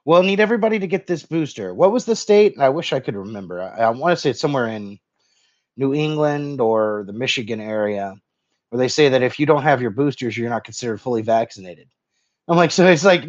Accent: American